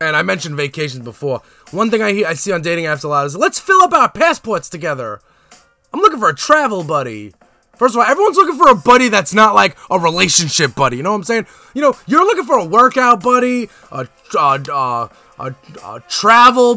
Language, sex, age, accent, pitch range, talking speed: English, male, 20-39, American, 190-295 Hz, 215 wpm